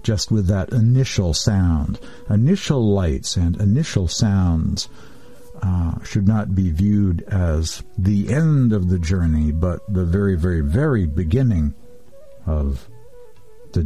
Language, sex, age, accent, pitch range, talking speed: English, male, 60-79, American, 90-120 Hz, 125 wpm